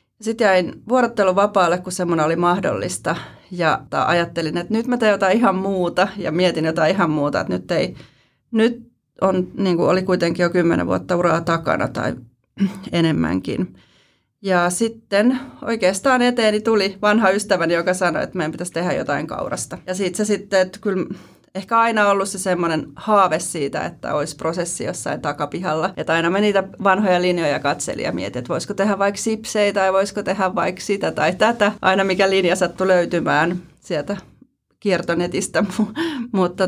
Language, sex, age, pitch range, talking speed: Finnish, female, 30-49, 175-205 Hz, 160 wpm